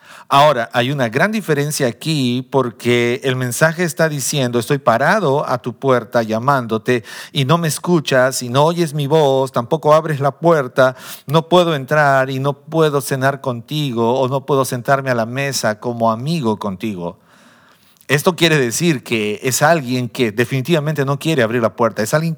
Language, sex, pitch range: Spanish, male, 120-150 Hz